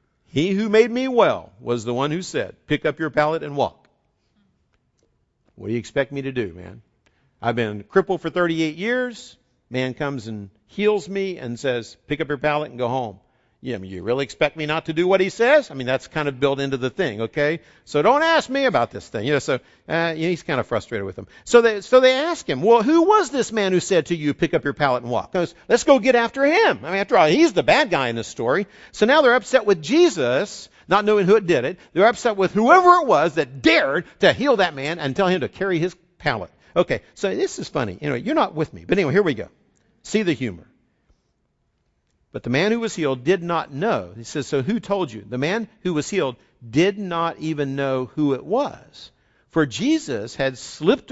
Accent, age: American, 50-69